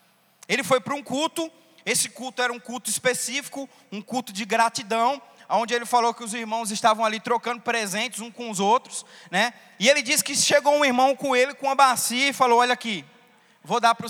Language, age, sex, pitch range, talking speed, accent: Portuguese, 20-39, male, 220-275 Hz, 210 wpm, Brazilian